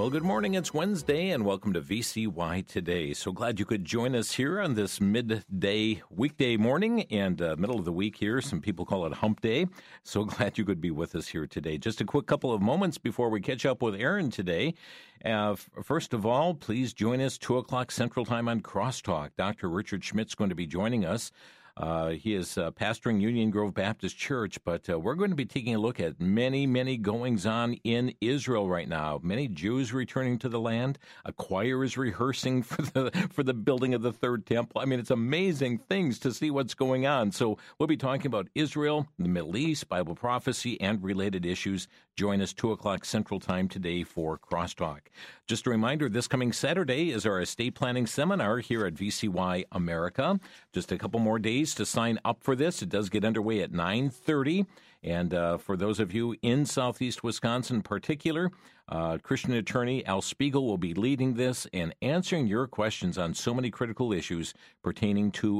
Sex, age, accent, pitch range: male, 50-69, American, 100-130 Hz